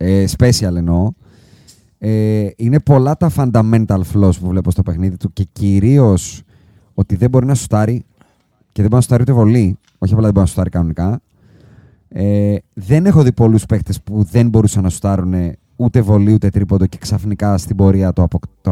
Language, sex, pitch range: Greek, male, 100-135 Hz